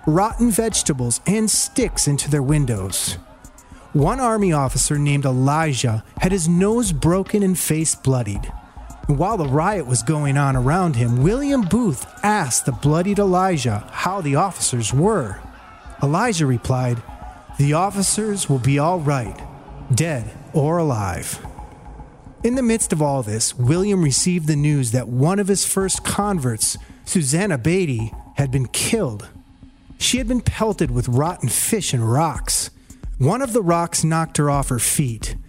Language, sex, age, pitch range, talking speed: English, male, 30-49, 125-190 Hz, 145 wpm